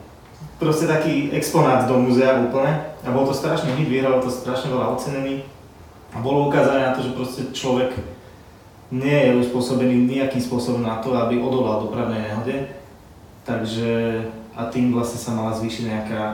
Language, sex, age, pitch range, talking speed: Slovak, male, 20-39, 120-135 Hz, 155 wpm